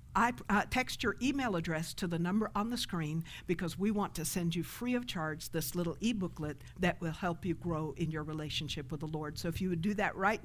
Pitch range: 165-230 Hz